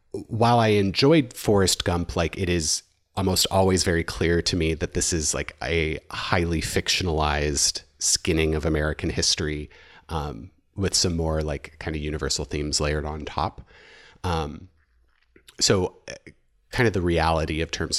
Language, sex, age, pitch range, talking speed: English, male, 30-49, 75-95 Hz, 150 wpm